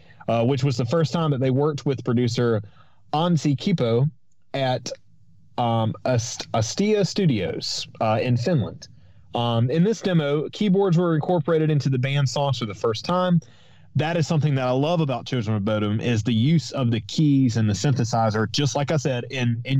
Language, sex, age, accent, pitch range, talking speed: English, male, 30-49, American, 120-160 Hz, 185 wpm